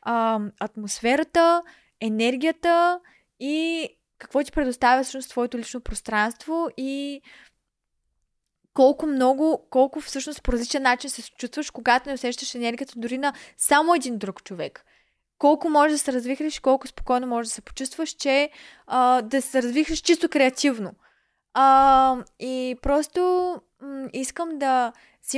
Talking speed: 135 wpm